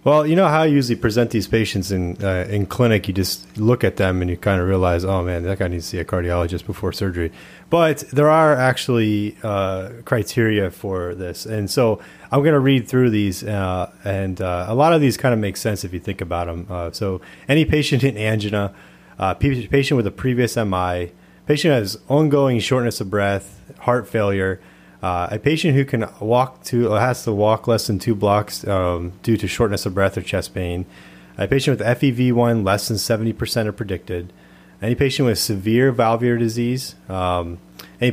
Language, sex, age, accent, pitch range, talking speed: English, male, 30-49, American, 95-120 Hz, 205 wpm